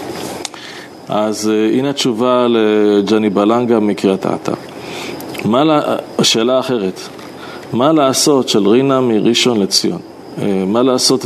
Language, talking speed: Hebrew, 105 wpm